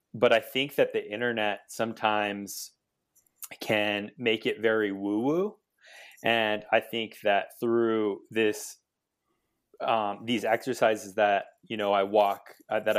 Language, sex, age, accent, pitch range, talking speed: English, male, 20-39, American, 100-120 Hz, 130 wpm